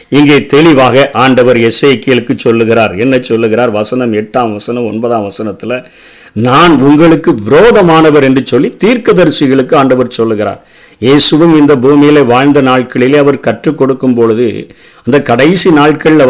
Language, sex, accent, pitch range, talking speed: Tamil, male, native, 120-155 Hz, 115 wpm